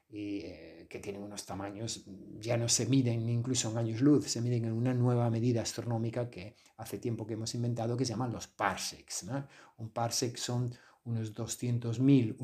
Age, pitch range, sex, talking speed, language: 50-69, 110-125 Hz, male, 185 wpm, Spanish